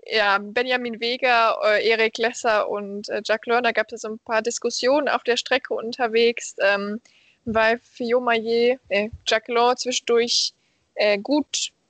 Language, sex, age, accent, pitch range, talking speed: German, female, 20-39, German, 215-250 Hz, 150 wpm